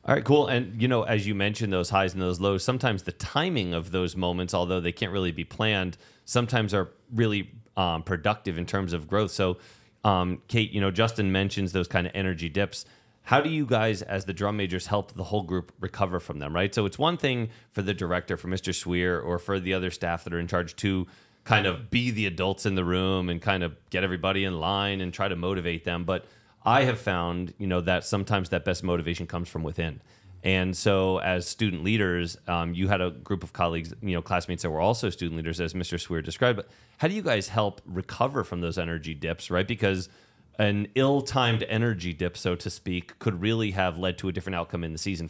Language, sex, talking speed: English, male, 230 wpm